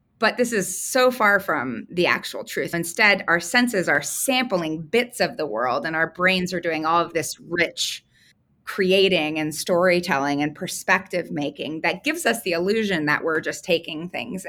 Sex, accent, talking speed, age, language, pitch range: female, American, 180 wpm, 20-39, English, 160-200 Hz